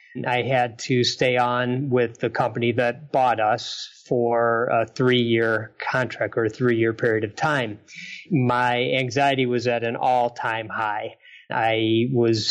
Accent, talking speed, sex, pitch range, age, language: American, 145 wpm, male, 120-135 Hz, 30-49, English